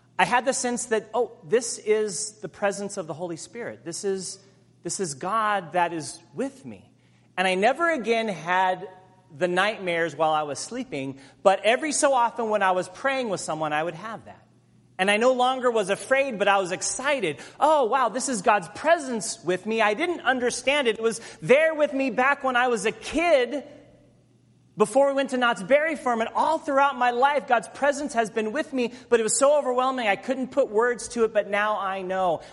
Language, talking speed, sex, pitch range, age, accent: English, 210 wpm, male, 155-245 Hz, 30-49, American